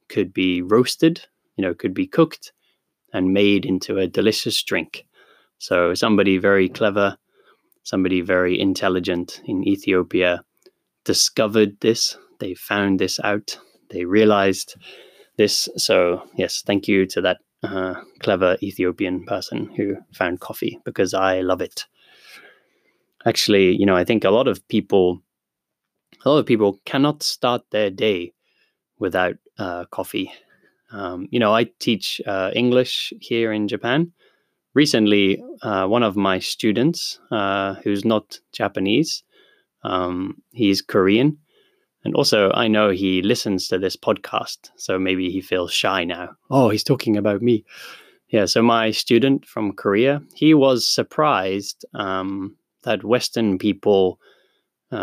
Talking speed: 135 wpm